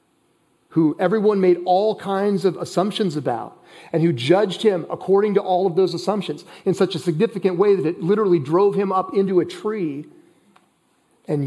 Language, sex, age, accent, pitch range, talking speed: English, male, 40-59, American, 130-175 Hz, 175 wpm